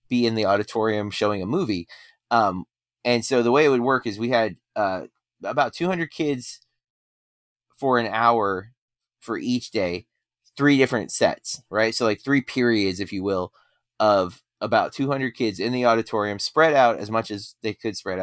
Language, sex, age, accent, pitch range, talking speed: English, male, 30-49, American, 105-130 Hz, 180 wpm